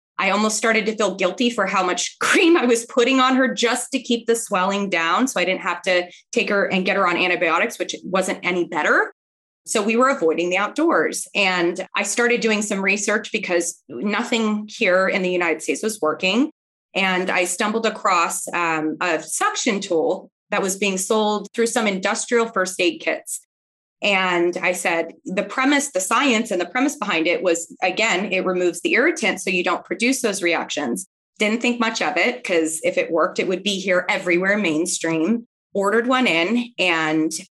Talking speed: 190 wpm